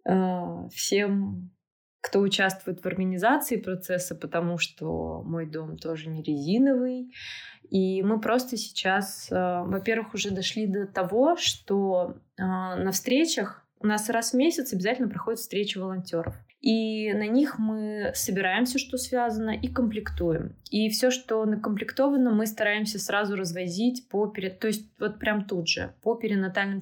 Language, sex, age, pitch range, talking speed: Russian, female, 20-39, 180-230 Hz, 135 wpm